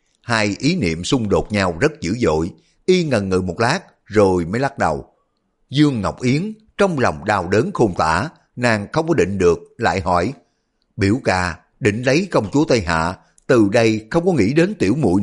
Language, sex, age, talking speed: Vietnamese, male, 60-79, 195 wpm